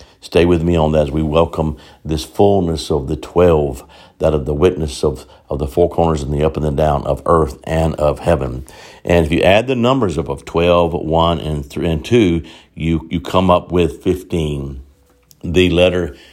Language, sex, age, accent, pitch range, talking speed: English, male, 60-79, American, 75-90 Hz, 200 wpm